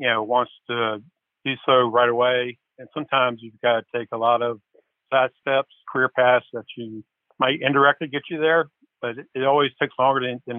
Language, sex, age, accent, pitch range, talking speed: English, male, 50-69, American, 120-140 Hz, 195 wpm